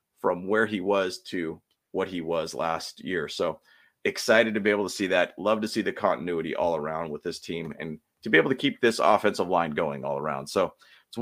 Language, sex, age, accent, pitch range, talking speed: English, male, 30-49, American, 95-120 Hz, 225 wpm